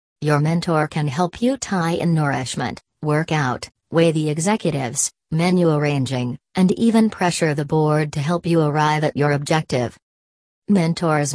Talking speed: 150 wpm